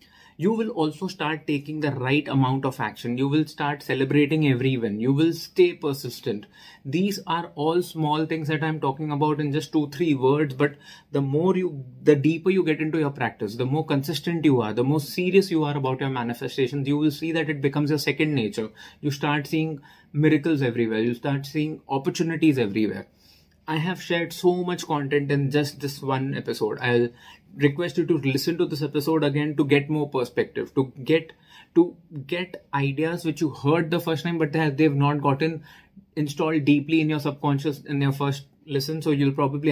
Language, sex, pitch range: English, male, 140-160 Hz